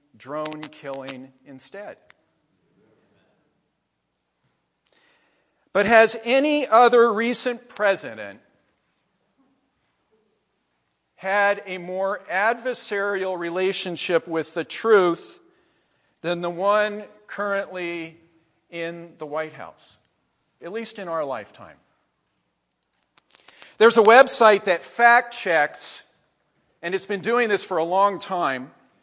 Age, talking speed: 50-69, 90 wpm